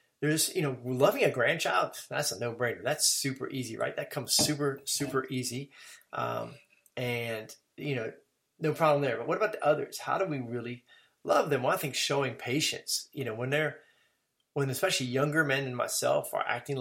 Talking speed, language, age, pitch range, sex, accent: 190 wpm, English, 30-49, 125-155 Hz, male, American